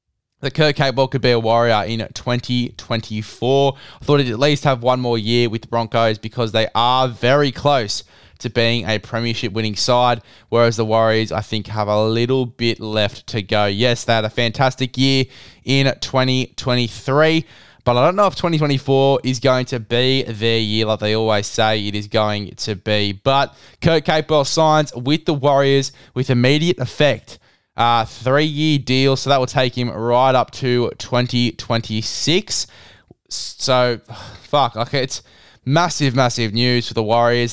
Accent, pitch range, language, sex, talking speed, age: Australian, 115-135 Hz, English, male, 170 wpm, 10-29